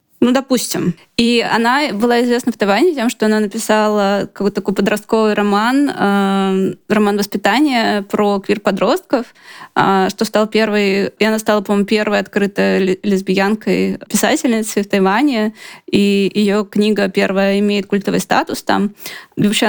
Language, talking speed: Russian, 130 wpm